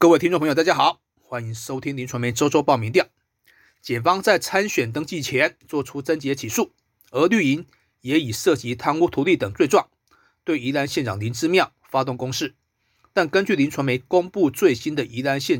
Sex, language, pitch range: male, Chinese, 115-160 Hz